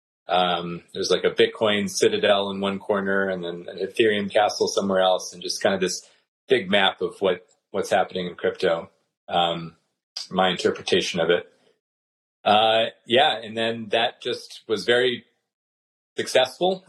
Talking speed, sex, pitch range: 155 wpm, male, 90-130 Hz